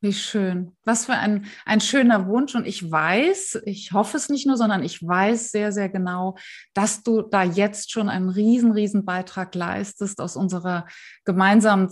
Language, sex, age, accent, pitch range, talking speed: German, female, 30-49, German, 195-225 Hz, 175 wpm